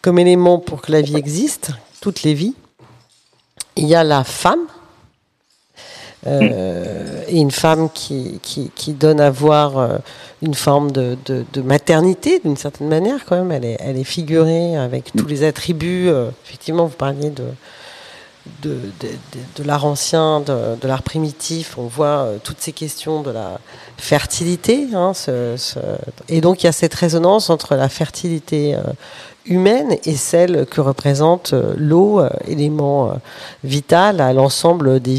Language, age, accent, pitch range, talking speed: French, 50-69, French, 140-175 Hz, 160 wpm